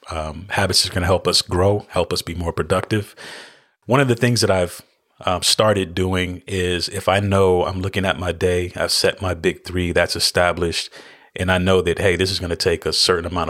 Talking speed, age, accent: 225 wpm, 30-49, American